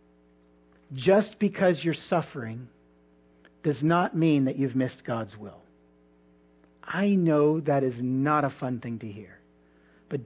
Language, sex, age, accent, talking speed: English, male, 50-69, American, 135 wpm